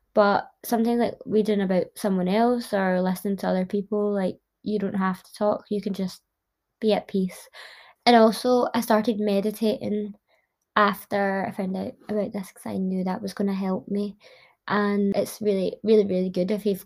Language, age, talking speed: English, 20-39, 185 wpm